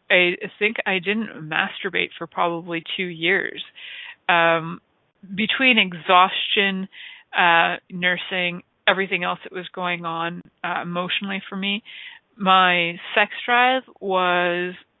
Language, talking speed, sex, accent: English, 110 wpm, female, American